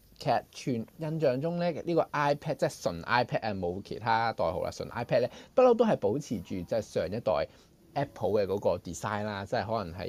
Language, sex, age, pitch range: Chinese, male, 20-39, 110-155 Hz